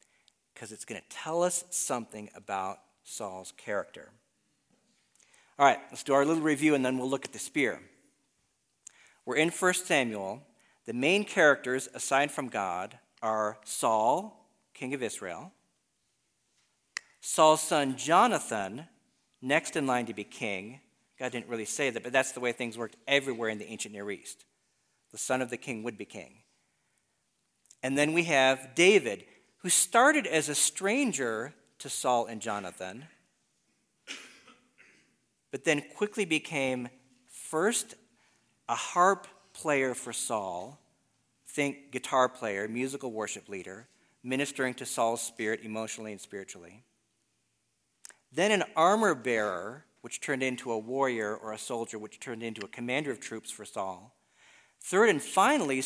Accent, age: American, 50-69